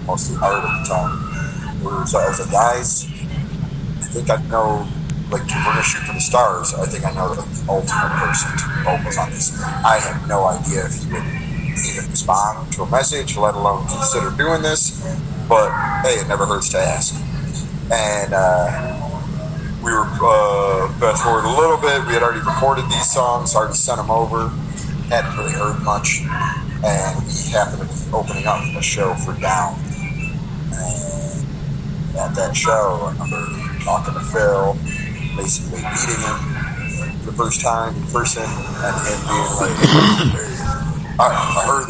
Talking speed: 165 wpm